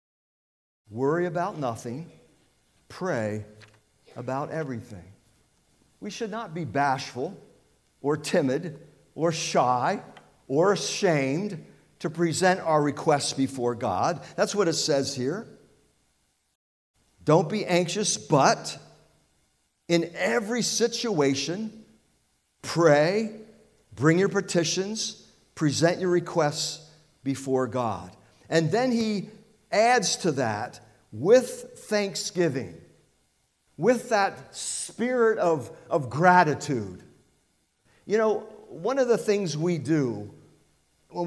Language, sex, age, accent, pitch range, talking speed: English, male, 50-69, American, 135-210 Hz, 95 wpm